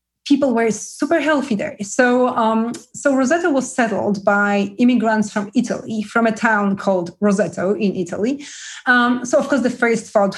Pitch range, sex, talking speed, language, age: 200-245 Hz, female, 170 wpm, English, 30-49